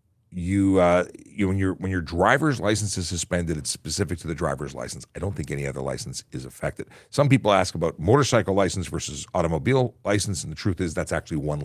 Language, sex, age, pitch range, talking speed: English, male, 50-69, 85-115 Hz, 210 wpm